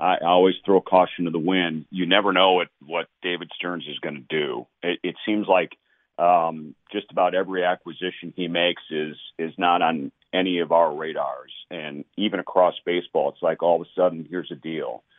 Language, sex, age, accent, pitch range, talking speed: English, male, 40-59, American, 85-105 Hz, 200 wpm